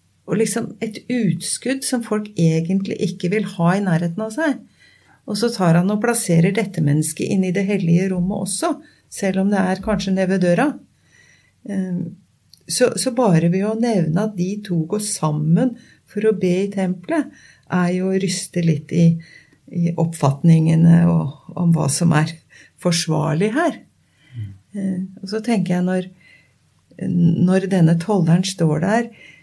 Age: 50-69